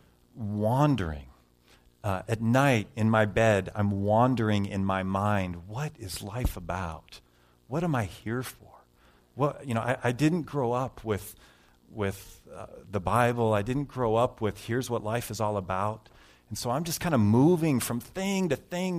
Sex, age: male, 40-59